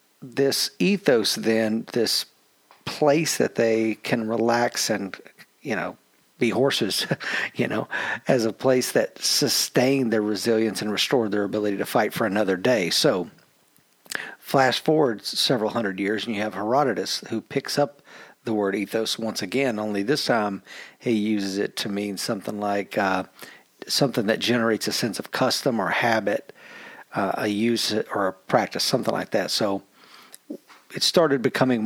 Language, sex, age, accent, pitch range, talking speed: English, male, 50-69, American, 105-120 Hz, 155 wpm